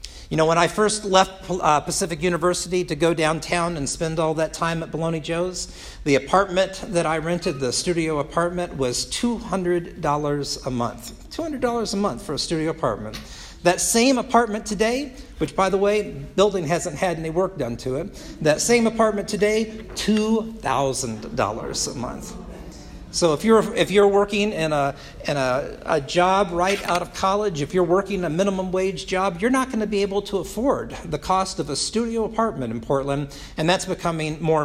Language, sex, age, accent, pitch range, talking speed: English, male, 50-69, American, 140-195 Hz, 180 wpm